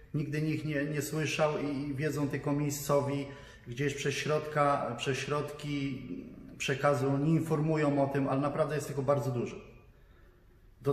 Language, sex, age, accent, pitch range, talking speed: Polish, male, 20-39, native, 130-150 Hz, 145 wpm